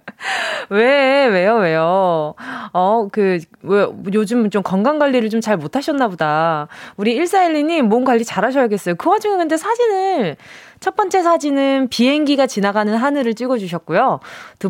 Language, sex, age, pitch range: Korean, female, 20-39, 200-320 Hz